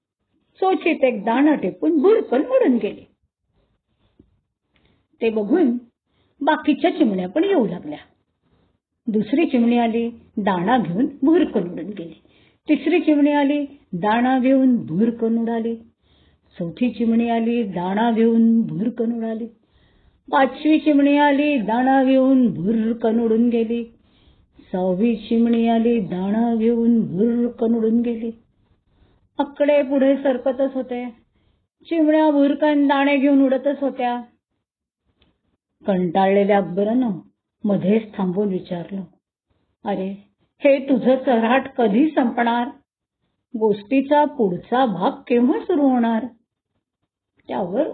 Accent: native